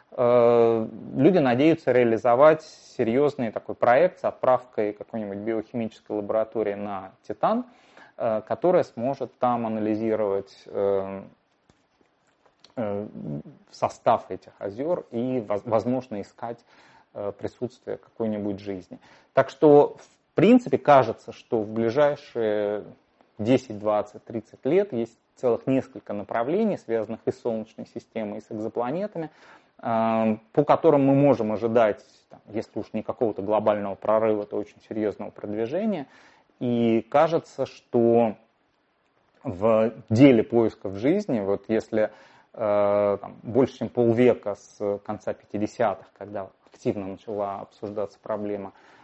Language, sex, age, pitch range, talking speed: Russian, male, 20-39, 105-120 Hz, 105 wpm